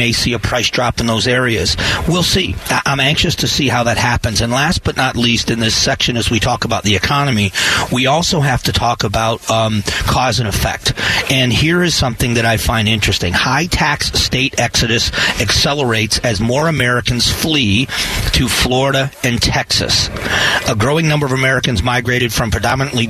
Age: 40-59